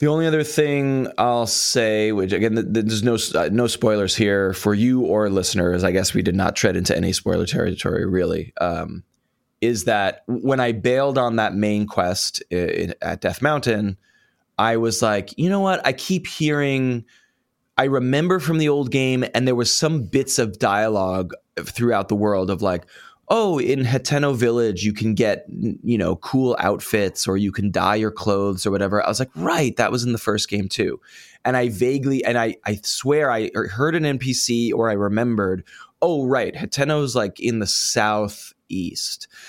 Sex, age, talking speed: male, 20-39, 185 wpm